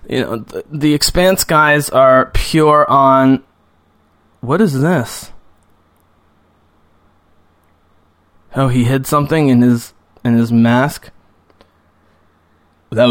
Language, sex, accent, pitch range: English, male, American, 115-150 Hz